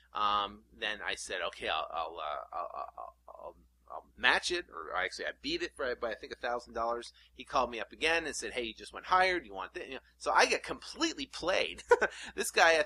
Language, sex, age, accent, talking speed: English, male, 30-49, American, 245 wpm